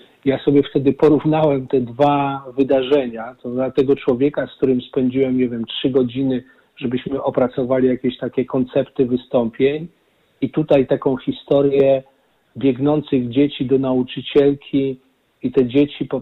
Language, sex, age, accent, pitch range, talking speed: Polish, male, 40-59, native, 125-140 Hz, 135 wpm